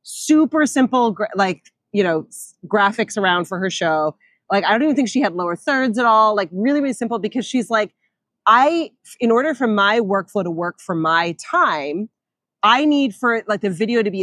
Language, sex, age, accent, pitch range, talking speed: English, female, 30-49, American, 185-235 Hz, 200 wpm